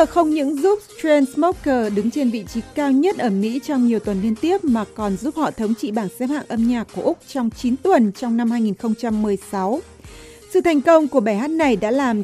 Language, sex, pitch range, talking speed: Vietnamese, female, 225-280 Hz, 220 wpm